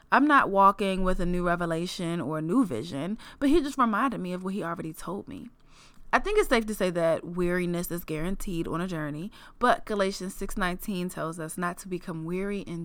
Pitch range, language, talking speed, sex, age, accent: 175-215 Hz, English, 210 wpm, female, 20-39, American